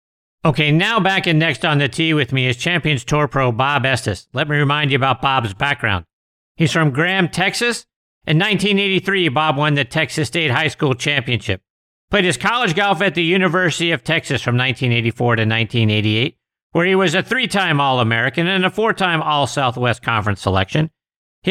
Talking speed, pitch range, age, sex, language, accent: 175 wpm, 130-185 Hz, 50-69, male, English, American